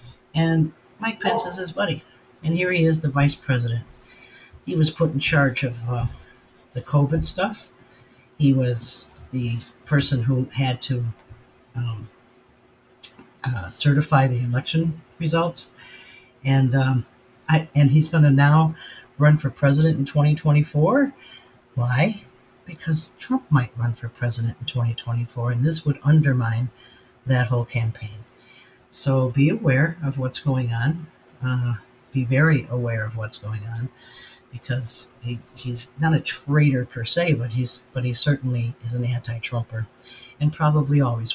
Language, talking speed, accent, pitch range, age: English, 140 wpm, American, 120-145 Hz, 60-79